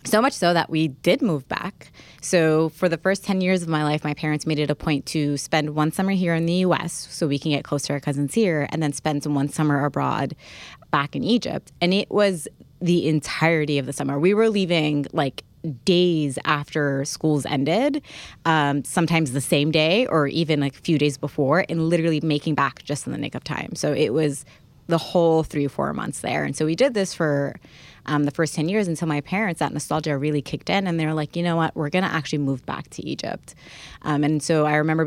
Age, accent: 20-39, American